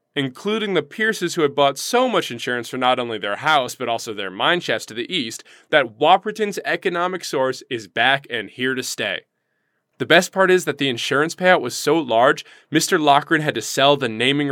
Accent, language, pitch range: American, English, 125-165 Hz